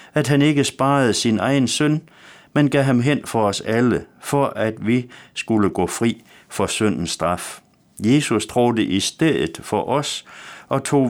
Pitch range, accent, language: 105-140 Hz, native, Danish